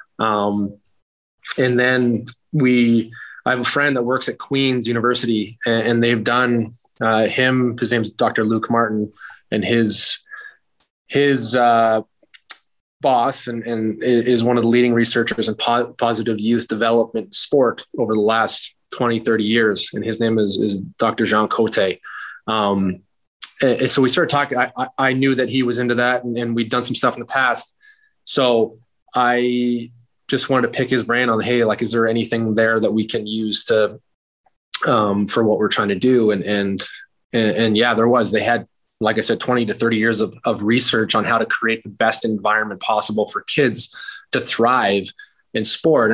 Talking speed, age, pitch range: 185 wpm, 20-39, 110-125 Hz